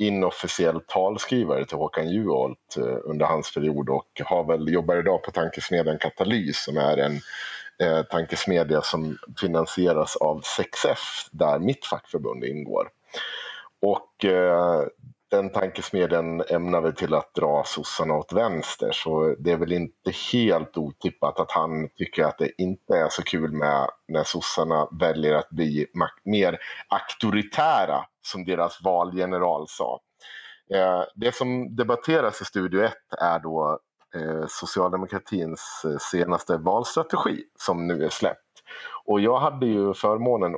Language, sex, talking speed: Swedish, male, 130 wpm